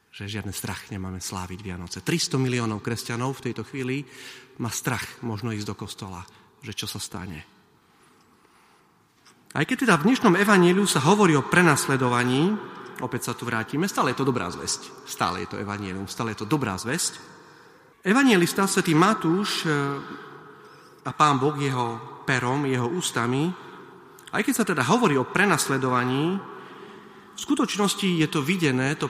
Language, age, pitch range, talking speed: Slovak, 40-59, 120-170 Hz, 145 wpm